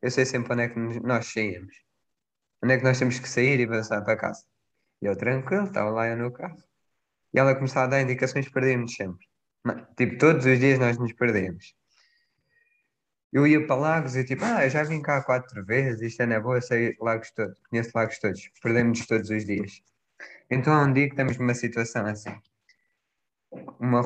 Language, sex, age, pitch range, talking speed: Portuguese, male, 20-39, 115-135 Hz, 205 wpm